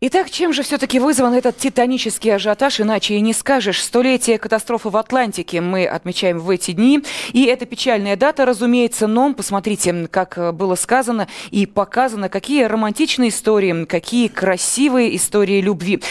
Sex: female